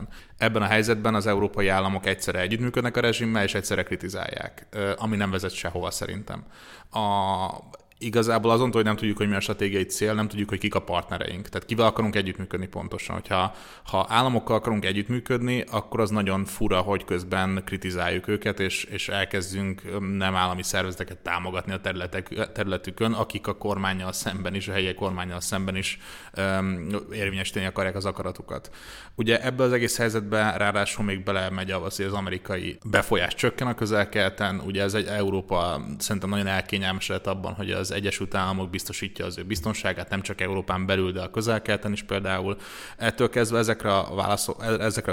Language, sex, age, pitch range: Hungarian, male, 20-39, 95-110 Hz